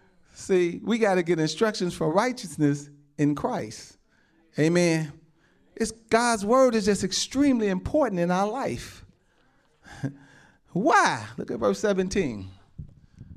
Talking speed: 115 wpm